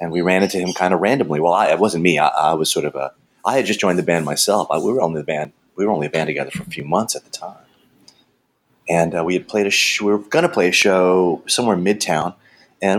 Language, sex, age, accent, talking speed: English, male, 30-49, American, 275 wpm